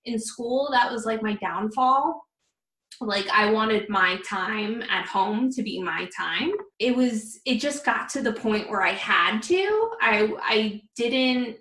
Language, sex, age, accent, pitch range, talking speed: English, female, 20-39, American, 205-255 Hz, 170 wpm